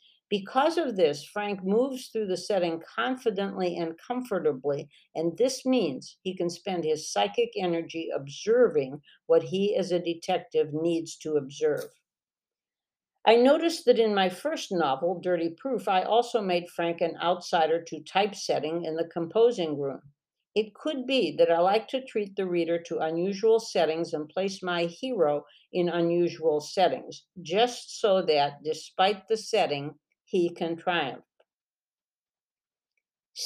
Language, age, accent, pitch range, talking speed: English, 60-79, American, 165-220 Hz, 140 wpm